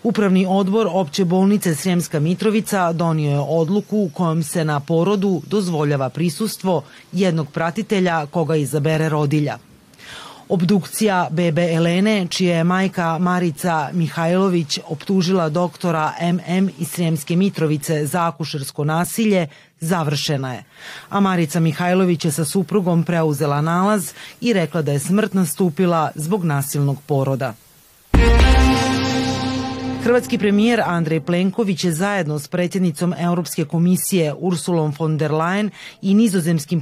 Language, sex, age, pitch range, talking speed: Croatian, female, 30-49, 155-190 Hz, 120 wpm